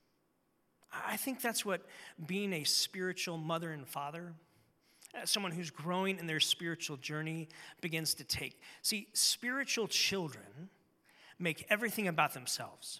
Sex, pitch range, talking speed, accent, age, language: male, 150-195 Hz, 125 wpm, American, 40-59, English